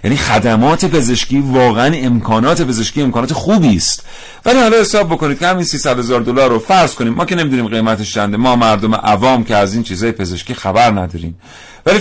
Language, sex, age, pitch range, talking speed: Persian, male, 40-59, 105-145 Hz, 180 wpm